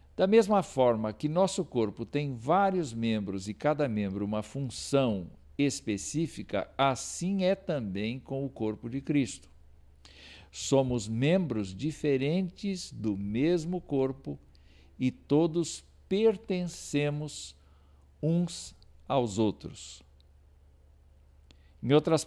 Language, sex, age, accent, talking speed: Portuguese, male, 60-79, Brazilian, 100 wpm